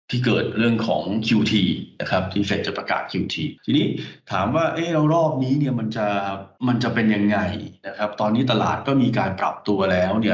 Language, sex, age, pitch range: Thai, male, 20-39, 105-135 Hz